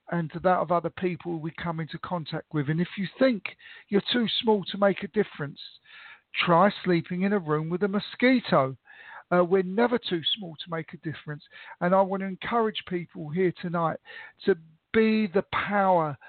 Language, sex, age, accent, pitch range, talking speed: English, male, 50-69, British, 165-195 Hz, 190 wpm